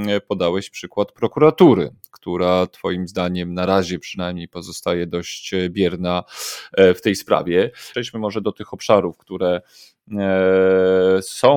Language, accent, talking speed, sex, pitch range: Polish, native, 115 wpm, male, 95-115 Hz